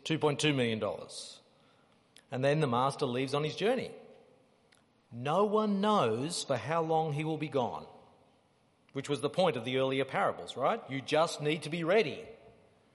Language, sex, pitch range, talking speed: English, male, 135-210 Hz, 160 wpm